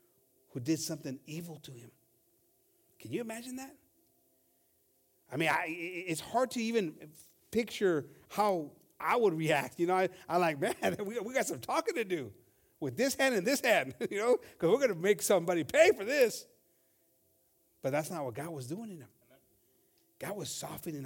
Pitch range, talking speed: 140-235 Hz, 175 wpm